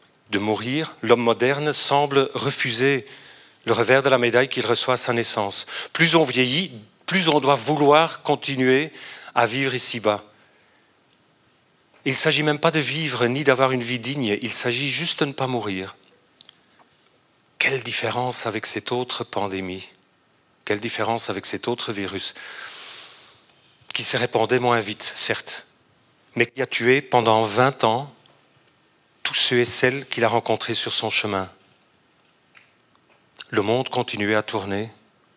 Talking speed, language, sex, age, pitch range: 145 wpm, French, male, 40-59, 105-130 Hz